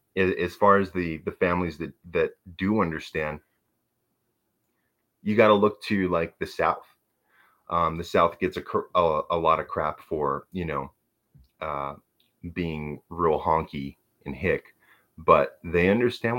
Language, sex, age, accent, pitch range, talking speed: English, male, 30-49, American, 75-90 Hz, 145 wpm